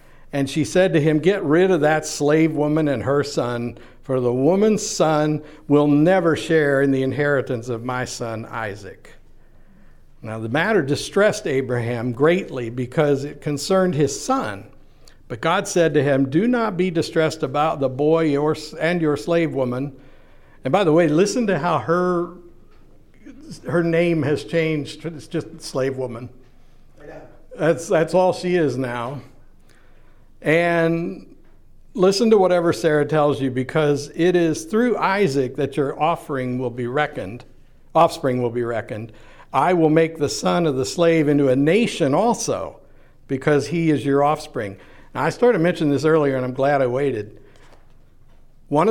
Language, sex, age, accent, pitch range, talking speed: English, male, 60-79, American, 135-165 Hz, 160 wpm